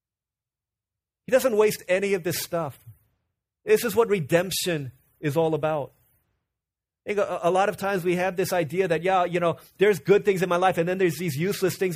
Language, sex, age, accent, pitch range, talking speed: English, male, 30-49, American, 120-180 Hz, 205 wpm